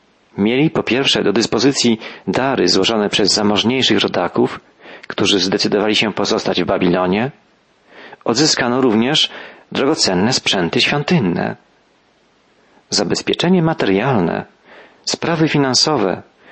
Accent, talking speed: native, 90 wpm